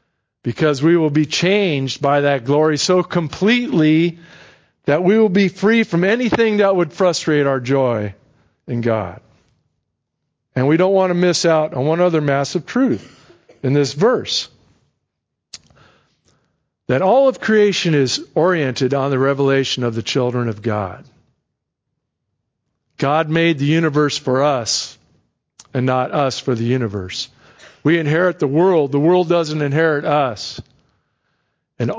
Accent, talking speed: American, 140 wpm